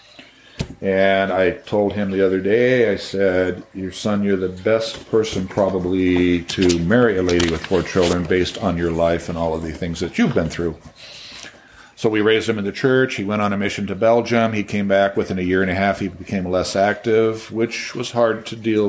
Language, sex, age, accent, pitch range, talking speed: English, male, 50-69, American, 90-105 Hz, 215 wpm